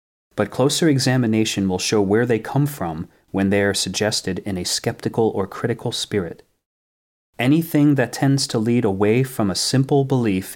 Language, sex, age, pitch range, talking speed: English, male, 30-49, 95-120 Hz, 165 wpm